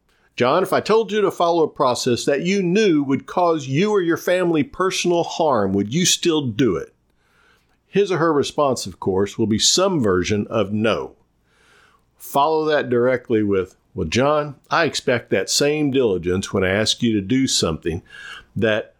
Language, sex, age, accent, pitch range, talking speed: English, male, 50-69, American, 105-155 Hz, 175 wpm